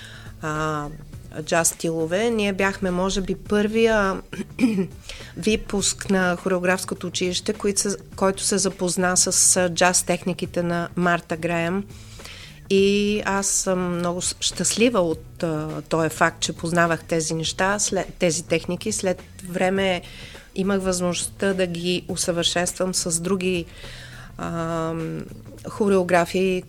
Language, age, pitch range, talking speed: Bulgarian, 40-59, 165-200 Hz, 110 wpm